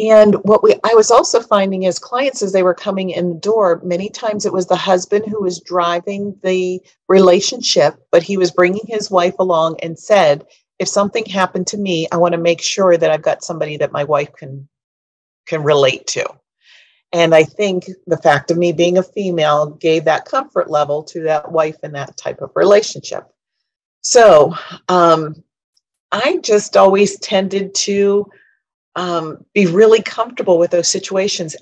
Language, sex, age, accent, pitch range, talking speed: English, female, 40-59, American, 160-195 Hz, 175 wpm